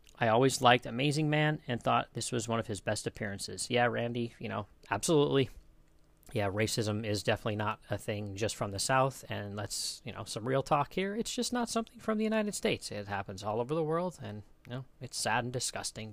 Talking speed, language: 220 wpm, English